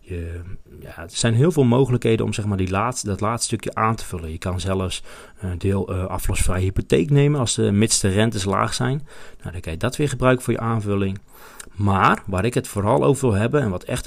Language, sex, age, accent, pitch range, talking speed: Dutch, male, 40-59, Dutch, 95-125 Hz, 230 wpm